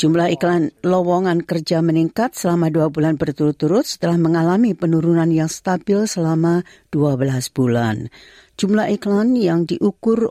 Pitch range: 145-175 Hz